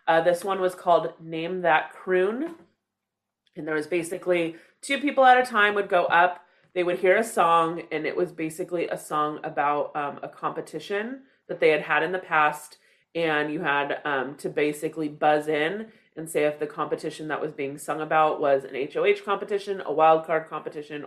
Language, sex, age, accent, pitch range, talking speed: English, female, 30-49, American, 150-185 Hz, 190 wpm